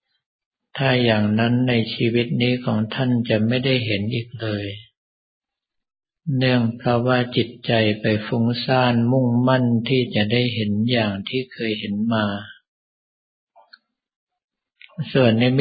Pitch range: 110-125 Hz